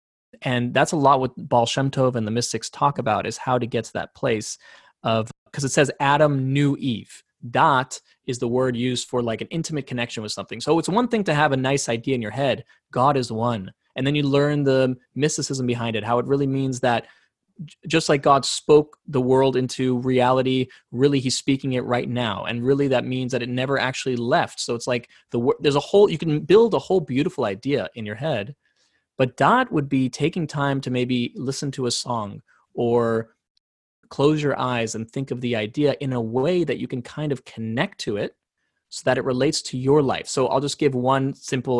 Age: 20-39